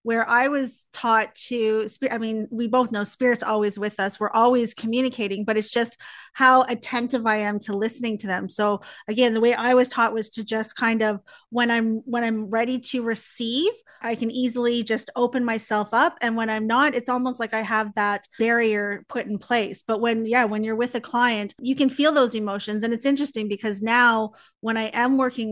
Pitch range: 215-250 Hz